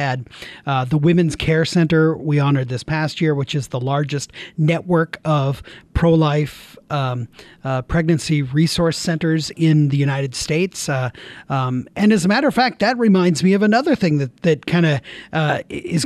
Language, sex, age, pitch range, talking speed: English, male, 40-59, 150-185 Hz, 170 wpm